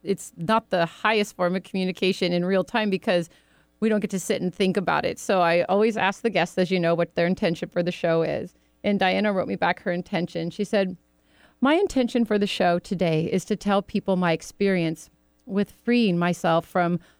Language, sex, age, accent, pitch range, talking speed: English, female, 40-59, American, 175-205 Hz, 215 wpm